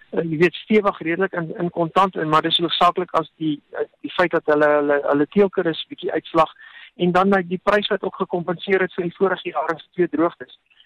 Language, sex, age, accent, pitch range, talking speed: English, male, 50-69, Dutch, 165-205 Hz, 220 wpm